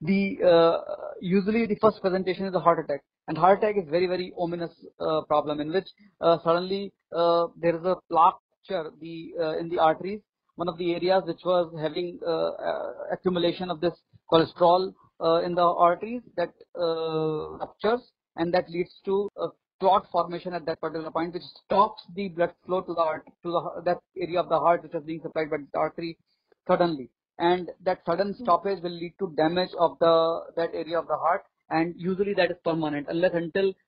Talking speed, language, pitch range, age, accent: 190 wpm, English, 165-185 Hz, 40-59, Indian